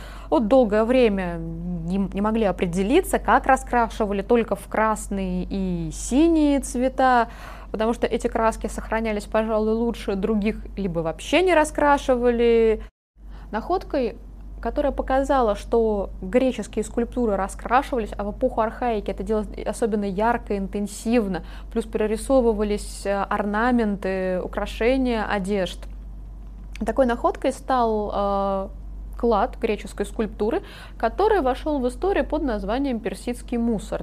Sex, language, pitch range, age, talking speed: female, Russian, 205-255 Hz, 20-39, 110 wpm